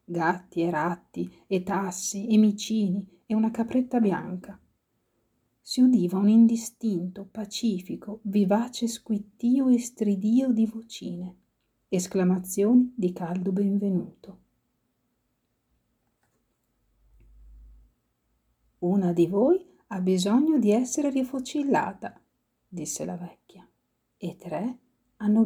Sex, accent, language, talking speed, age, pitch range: female, native, Italian, 95 wpm, 40-59, 180-225 Hz